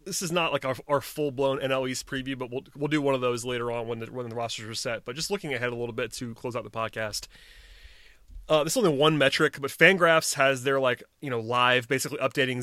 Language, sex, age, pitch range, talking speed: English, male, 30-49, 125-140 Hz, 260 wpm